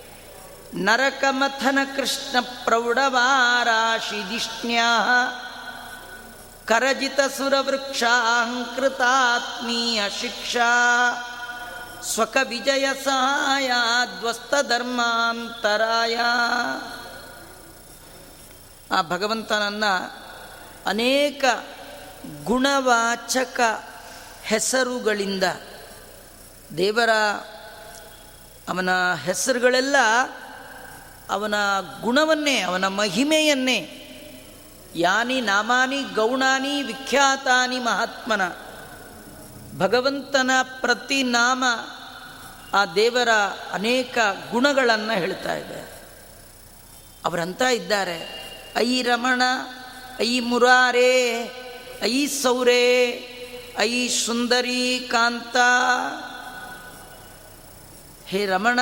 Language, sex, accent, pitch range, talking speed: Kannada, female, native, 225-255 Hz, 50 wpm